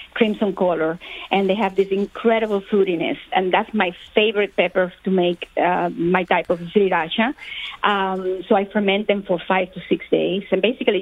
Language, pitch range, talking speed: English, 180-205 Hz, 175 wpm